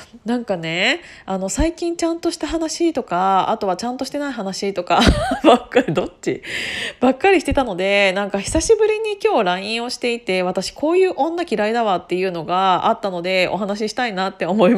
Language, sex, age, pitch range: Japanese, female, 20-39, 185-290 Hz